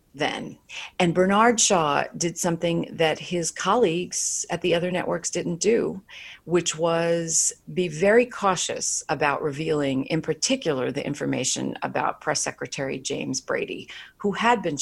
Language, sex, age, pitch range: English, female, 40-59, 145-200 Hz